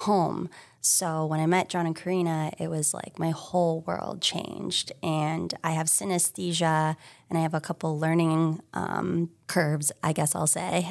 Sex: female